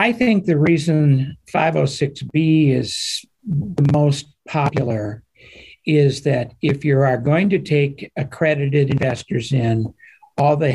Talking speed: 125 wpm